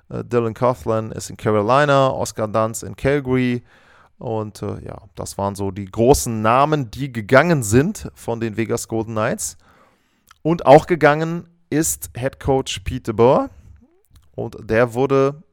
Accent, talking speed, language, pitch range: German, 145 wpm, German, 105-135 Hz